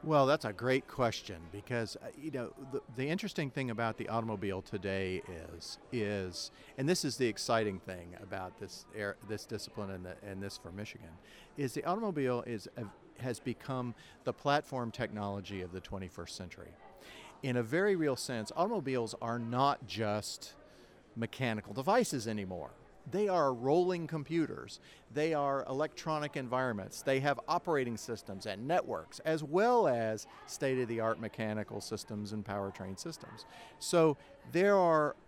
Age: 50-69